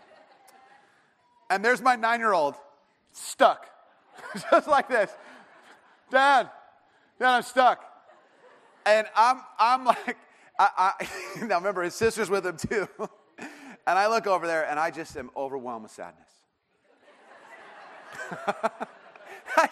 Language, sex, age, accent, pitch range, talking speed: English, male, 30-49, American, 190-275 Hz, 120 wpm